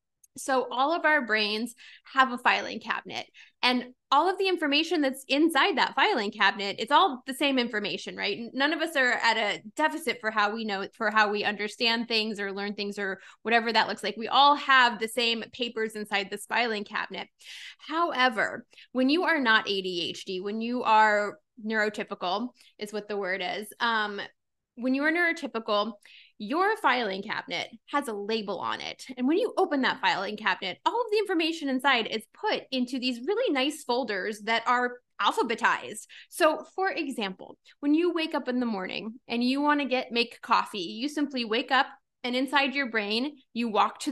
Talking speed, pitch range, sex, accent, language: 185 wpm, 215-275 Hz, female, American, English